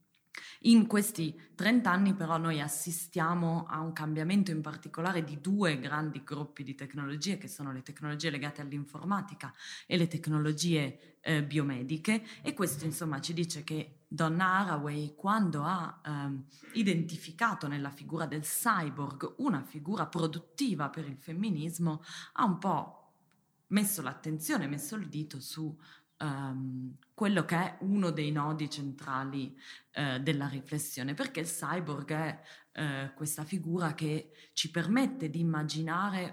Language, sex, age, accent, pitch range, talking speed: Italian, female, 20-39, native, 150-185 Hz, 130 wpm